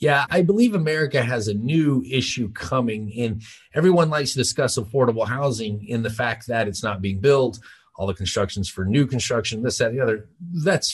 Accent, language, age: American, English, 30-49